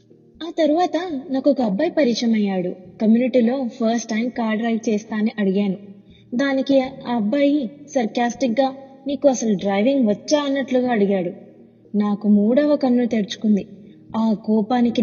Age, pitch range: 20-39, 215-275 Hz